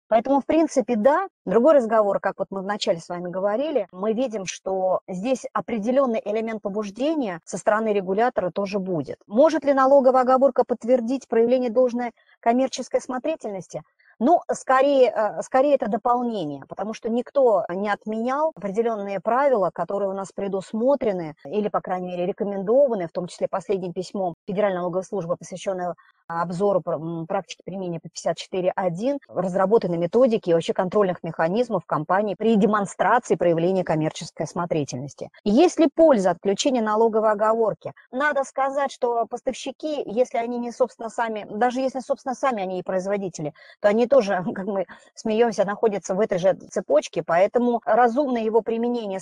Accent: native